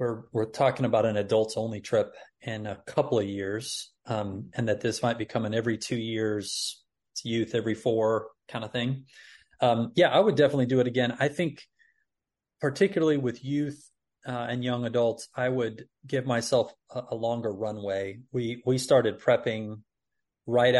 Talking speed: 170 wpm